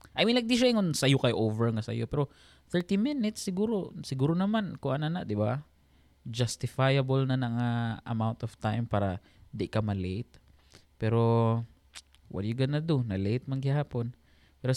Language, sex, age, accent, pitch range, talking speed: Filipino, male, 20-39, native, 100-135 Hz, 165 wpm